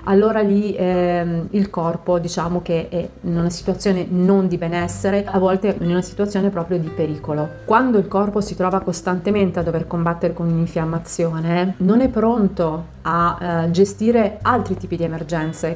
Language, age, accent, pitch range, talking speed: Italian, 30-49, native, 170-200 Hz, 165 wpm